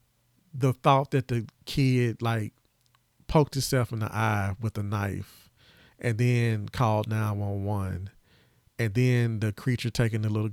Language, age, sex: English, 40-59, male